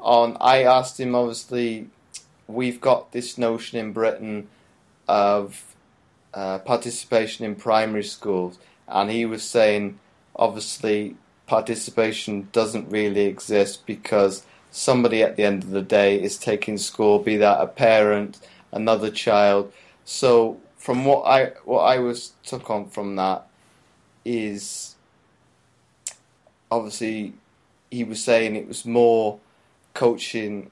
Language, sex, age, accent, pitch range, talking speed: English, male, 30-49, British, 100-115 Hz, 125 wpm